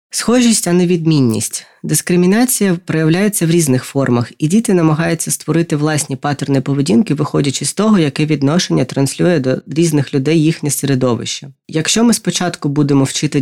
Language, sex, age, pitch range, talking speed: Ukrainian, female, 20-39, 140-175 Hz, 145 wpm